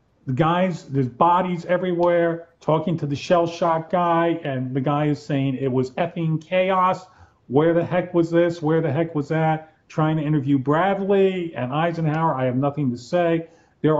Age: 40-59